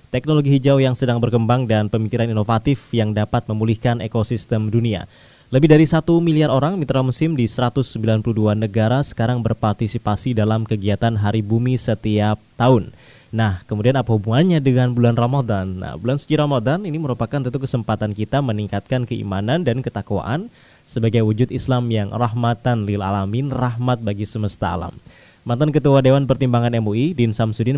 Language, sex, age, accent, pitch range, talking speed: Indonesian, male, 20-39, native, 110-135 Hz, 150 wpm